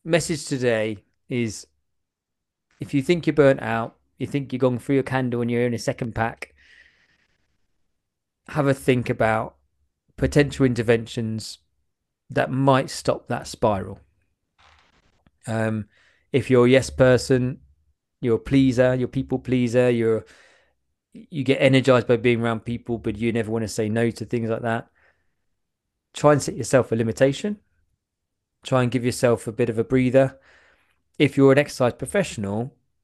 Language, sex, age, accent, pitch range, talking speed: English, male, 20-39, British, 105-135 Hz, 155 wpm